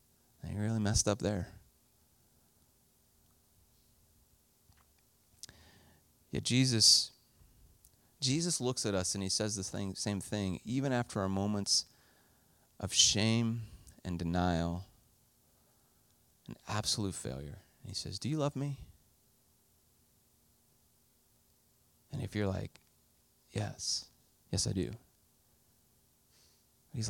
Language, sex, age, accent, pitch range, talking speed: English, male, 30-49, American, 95-130 Hz, 100 wpm